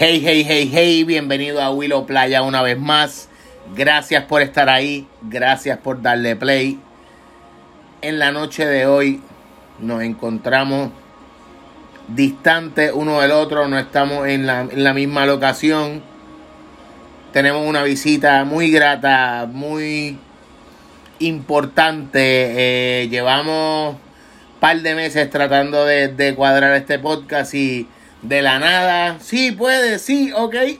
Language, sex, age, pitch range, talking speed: Spanish, male, 30-49, 135-155 Hz, 125 wpm